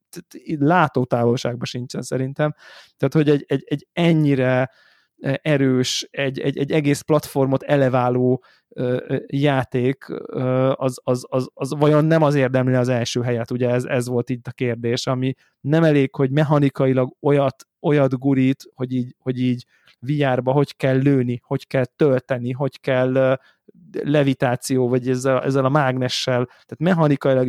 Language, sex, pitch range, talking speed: Hungarian, male, 130-150 Hz, 150 wpm